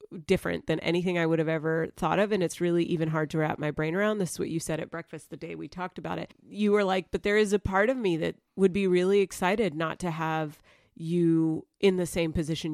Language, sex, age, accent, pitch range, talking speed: English, female, 30-49, American, 160-200 Hz, 260 wpm